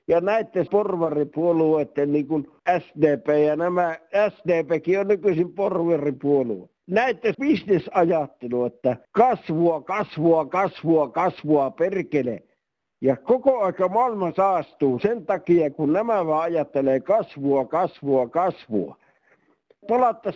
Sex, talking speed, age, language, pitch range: male, 100 wpm, 60-79, Finnish, 150-205 Hz